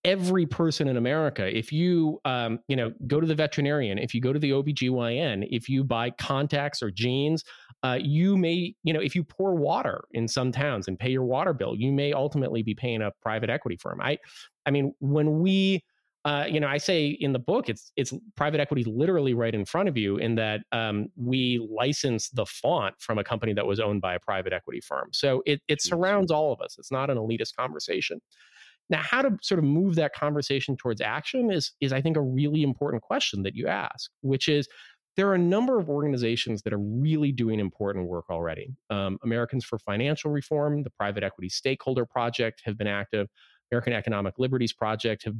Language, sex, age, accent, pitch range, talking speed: English, male, 30-49, American, 110-150 Hz, 210 wpm